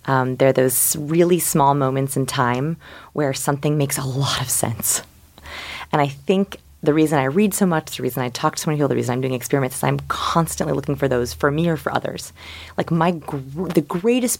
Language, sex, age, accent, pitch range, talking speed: English, female, 30-49, American, 130-170 Hz, 220 wpm